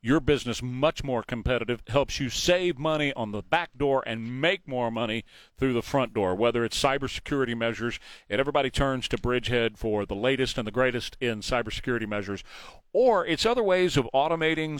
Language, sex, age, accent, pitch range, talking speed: English, male, 40-59, American, 115-145 Hz, 185 wpm